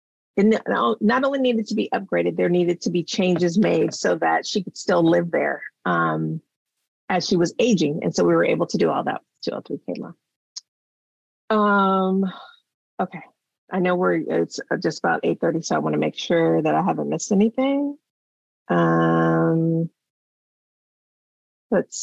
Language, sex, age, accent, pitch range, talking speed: English, female, 40-59, American, 165-205 Hz, 160 wpm